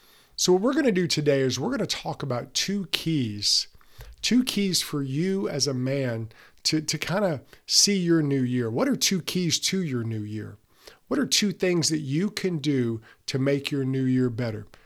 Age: 50-69